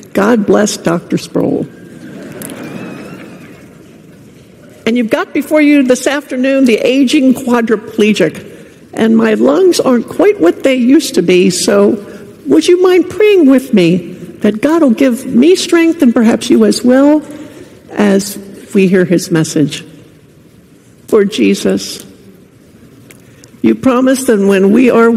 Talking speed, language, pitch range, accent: 130 wpm, English, 180-260 Hz, American